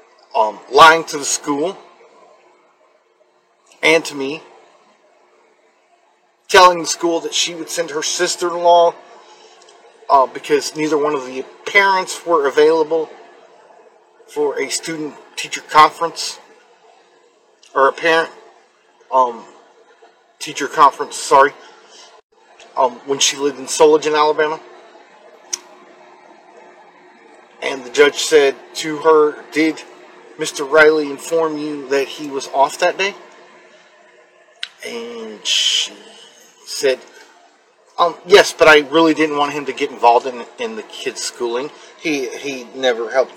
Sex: male